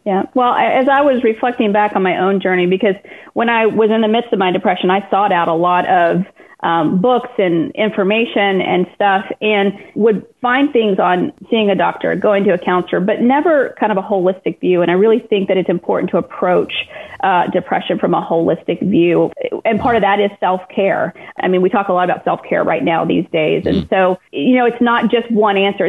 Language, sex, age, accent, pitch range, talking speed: English, female, 30-49, American, 185-230 Hz, 220 wpm